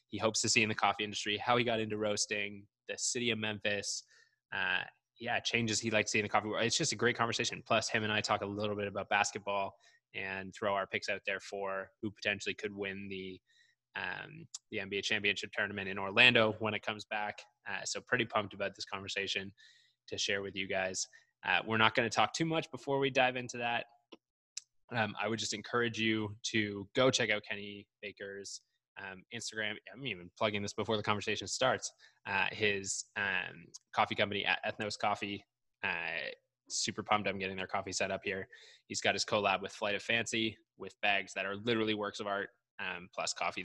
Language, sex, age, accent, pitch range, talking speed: English, male, 20-39, American, 100-115 Hz, 205 wpm